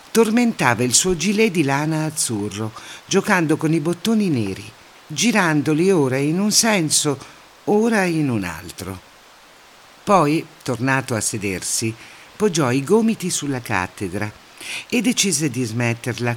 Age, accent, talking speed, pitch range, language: 50-69, native, 125 wpm, 120-185 Hz, Italian